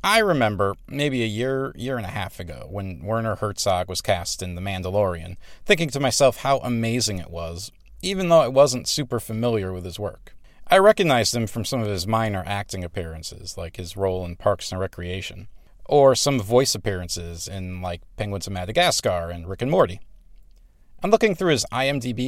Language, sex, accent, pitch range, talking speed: English, male, American, 95-130 Hz, 185 wpm